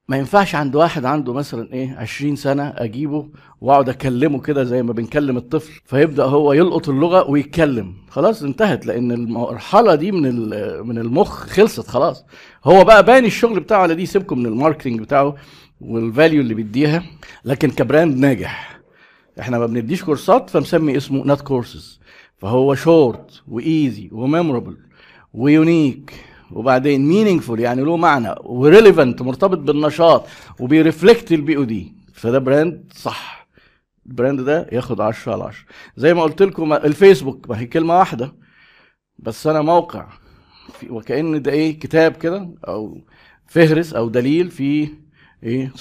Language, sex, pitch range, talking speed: Arabic, male, 125-160 Hz, 135 wpm